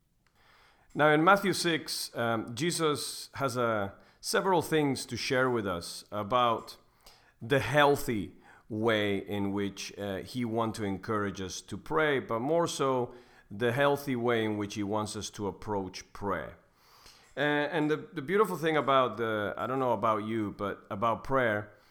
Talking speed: 160 wpm